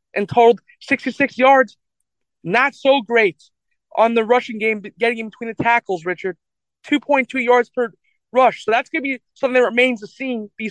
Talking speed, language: 180 wpm, English